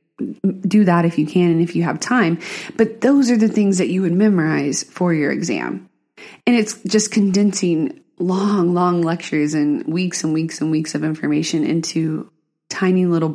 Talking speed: 180 wpm